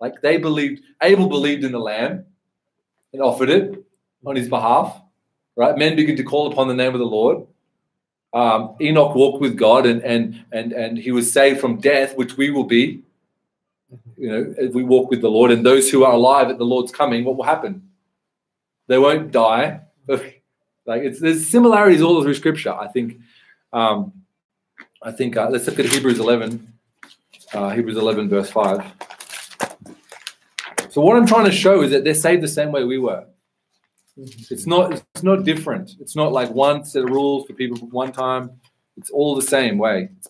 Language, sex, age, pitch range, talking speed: English, male, 30-49, 115-155 Hz, 190 wpm